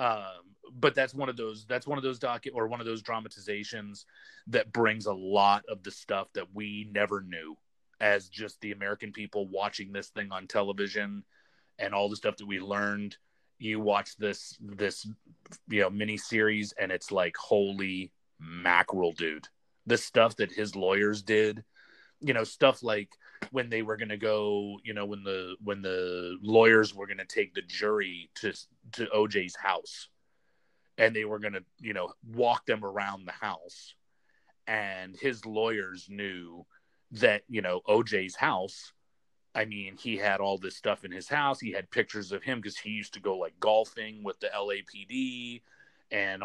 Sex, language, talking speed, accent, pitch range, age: male, English, 180 wpm, American, 100-110 Hz, 30-49